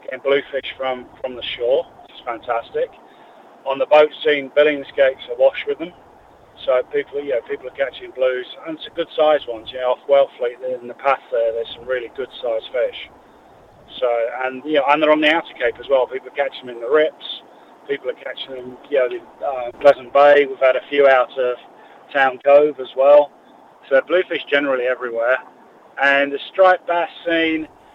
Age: 40-59